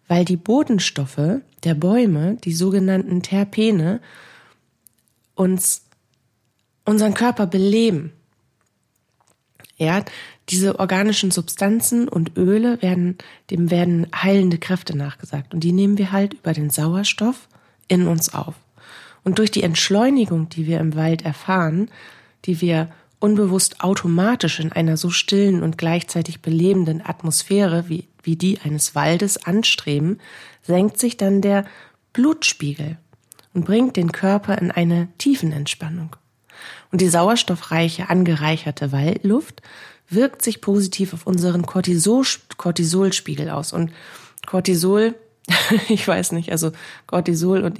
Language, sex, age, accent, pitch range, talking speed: German, female, 40-59, German, 160-195 Hz, 120 wpm